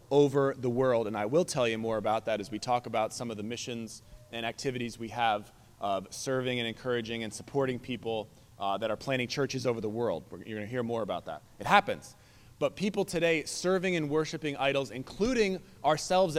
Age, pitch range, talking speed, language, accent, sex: 20-39, 115-150 Hz, 205 wpm, English, American, male